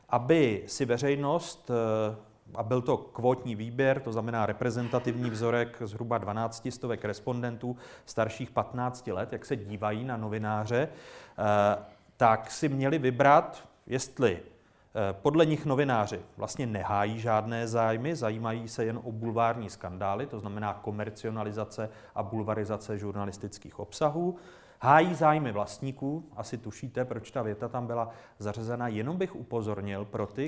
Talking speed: 130 wpm